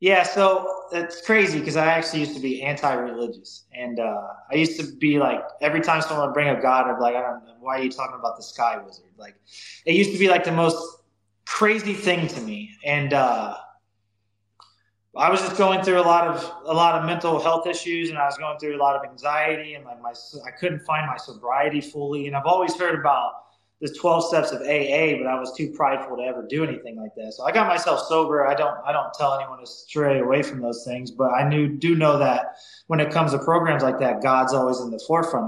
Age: 20-39